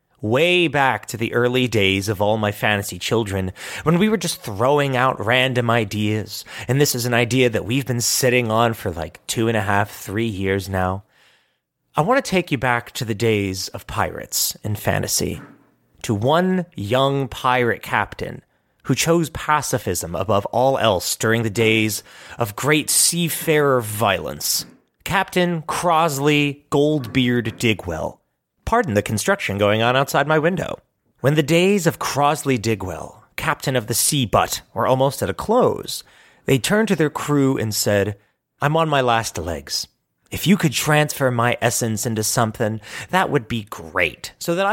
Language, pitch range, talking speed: English, 110-145 Hz, 165 wpm